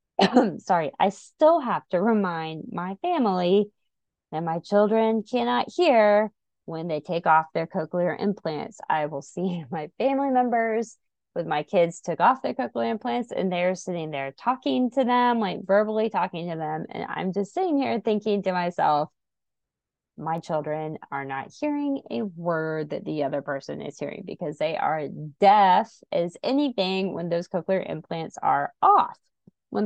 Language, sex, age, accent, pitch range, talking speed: English, female, 20-39, American, 160-210 Hz, 160 wpm